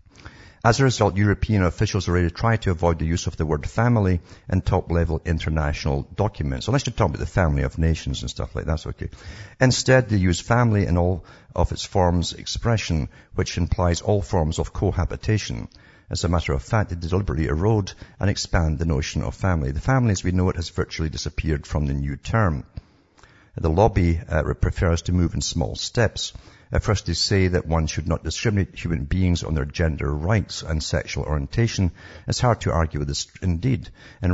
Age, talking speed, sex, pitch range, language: 60-79, 195 wpm, male, 80-100 Hz, English